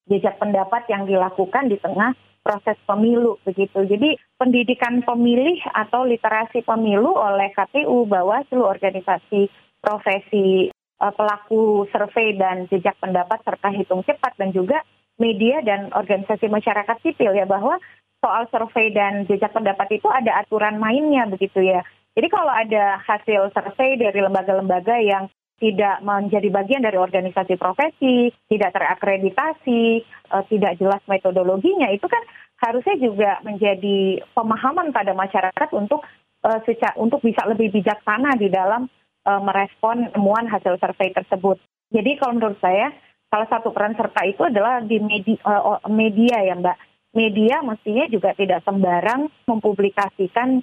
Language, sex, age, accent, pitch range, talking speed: Indonesian, female, 20-39, native, 195-235 Hz, 130 wpm